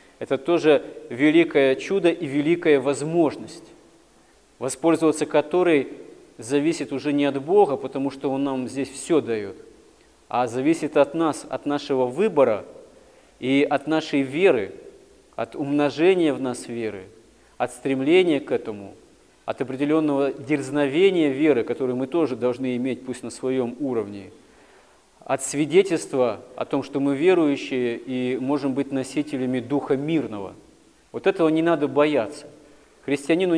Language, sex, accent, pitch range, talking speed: Russian, male, native, 135-165 Hz, 130 wpm